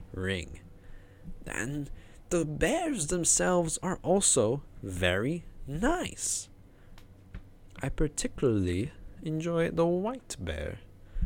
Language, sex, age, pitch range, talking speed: English, male, 20-39, 95-140 Hz, 80 wpm